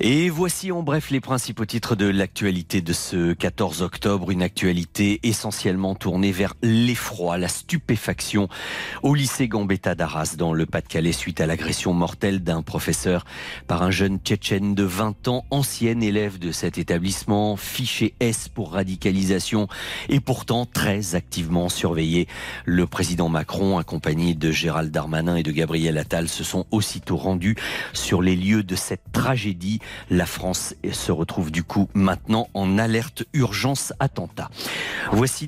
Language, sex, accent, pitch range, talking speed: French, male, French, 90-115 Hz, 150 wpm